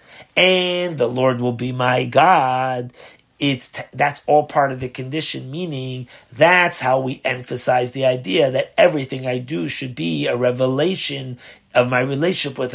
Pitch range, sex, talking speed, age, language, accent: 125-155 Hz, male, 155 wpm, 30-49, English, American